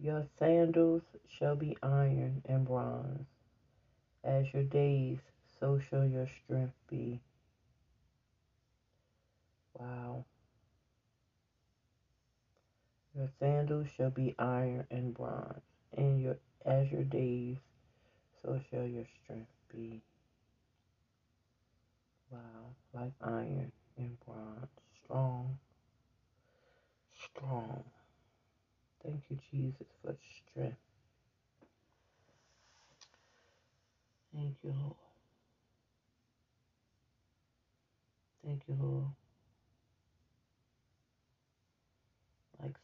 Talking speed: 75 wpm